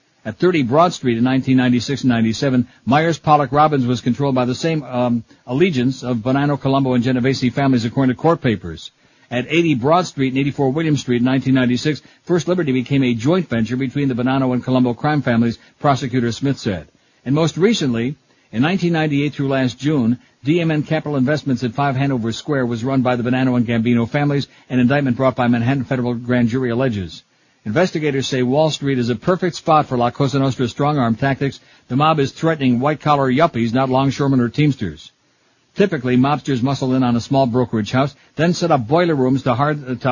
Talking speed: 180 wpm